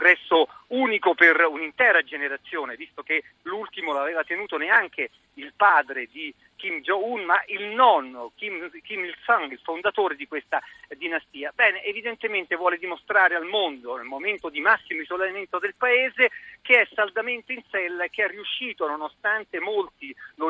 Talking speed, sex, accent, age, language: 150 wpm, male, native, 40-59, Italian